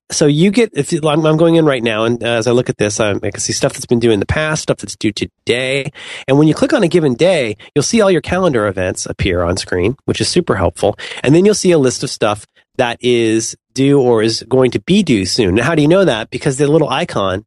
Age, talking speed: 30-49, 270 wpm